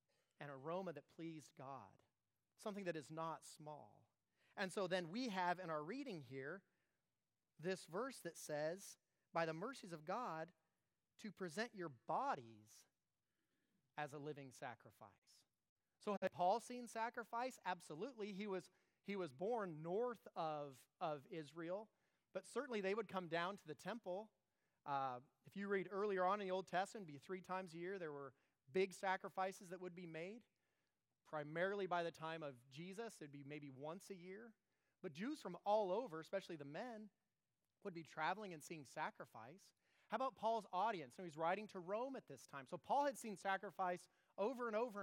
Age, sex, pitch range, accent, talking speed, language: 30-49, male, 155-210 Hz, American, 175 wpm, English